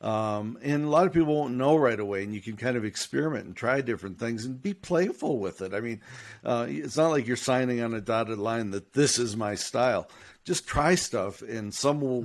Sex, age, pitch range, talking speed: male, 50-69, 110-140 Hz, 235 wpm